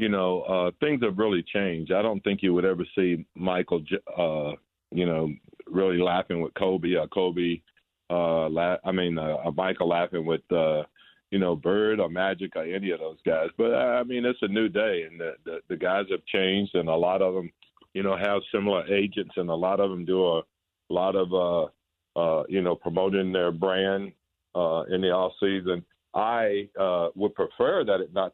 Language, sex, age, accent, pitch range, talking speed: English, male, 50-69, American, 85-95 Hz, 205 wpm